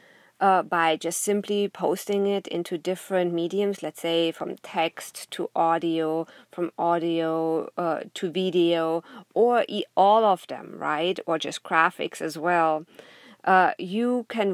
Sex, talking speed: female, 135 wpm